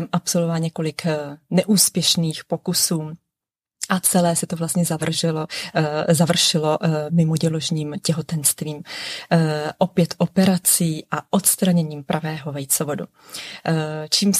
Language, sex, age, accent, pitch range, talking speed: Czech, female, 30-49, native, 155-180 Hz, 90 wpm